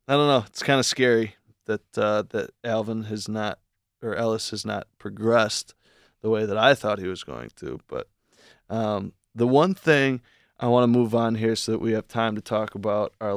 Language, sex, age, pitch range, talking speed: English, male, 20-39, 100-120 Hz, 210 wpm